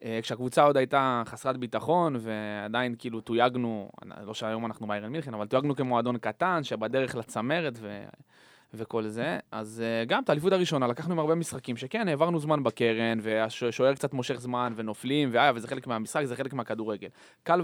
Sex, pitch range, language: male, 115-145 Hz, Hebrew